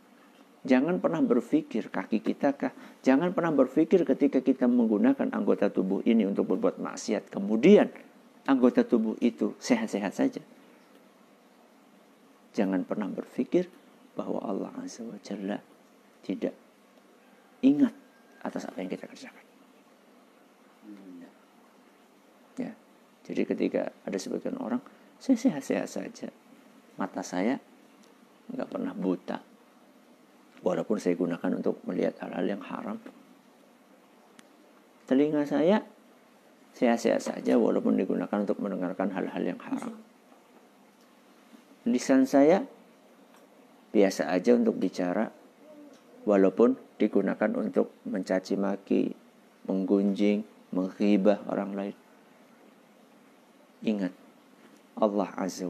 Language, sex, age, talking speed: Indonesian, male, 50-69, 95 wpm